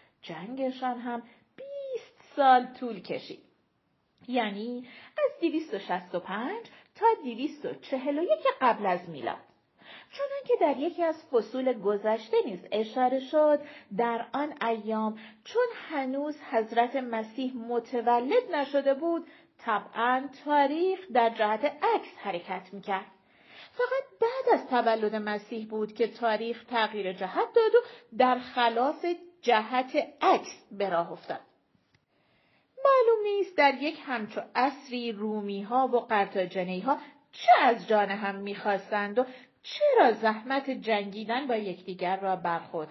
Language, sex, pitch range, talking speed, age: Persian, female, 215-295 Hz, 115 wpm, 40-59